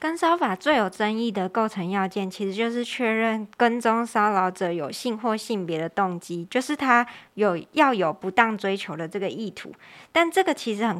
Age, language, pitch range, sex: 20-39, Chinese, 195-235 Hz, male